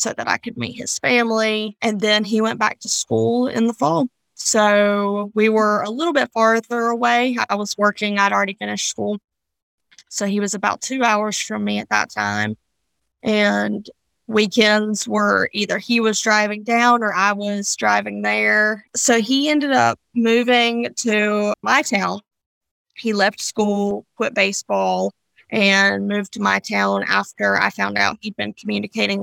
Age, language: 20-39, English